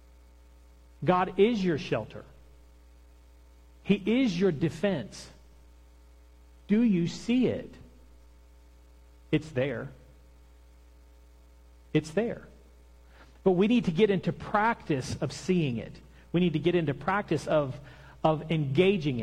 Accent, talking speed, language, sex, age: American, 110 wpm, English, male, 40-59